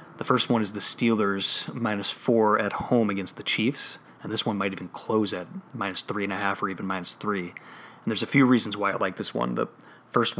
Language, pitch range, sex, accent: English, 100-110 Hz, male, American